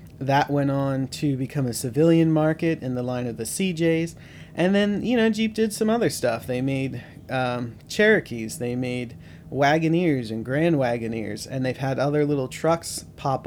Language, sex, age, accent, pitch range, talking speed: English, male, 30-49, American, 125-160 Hz, 180 wpm